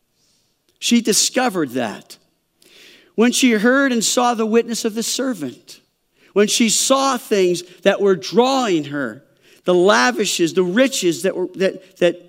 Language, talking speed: English, 140 wpm